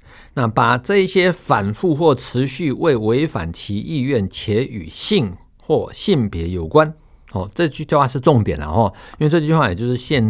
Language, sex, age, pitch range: Chinese, male, 50-69, 100-150 Hz